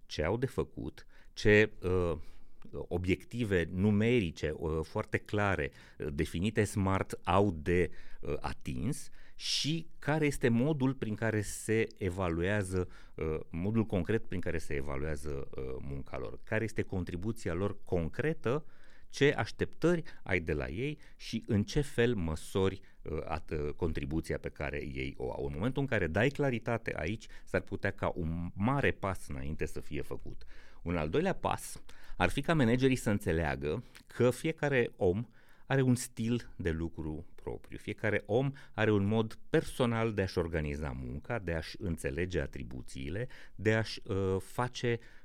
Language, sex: Romanian, male